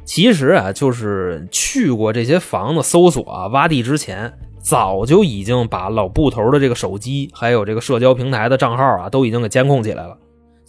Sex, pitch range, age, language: male, 110-150 Hz, 20-39, Chinese